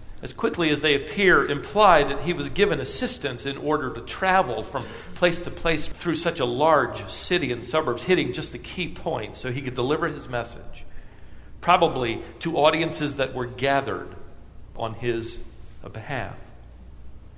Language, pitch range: English, 105-160 Hz